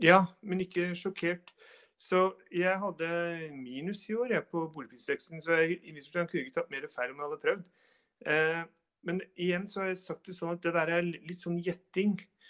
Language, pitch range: English, 155-190 Hz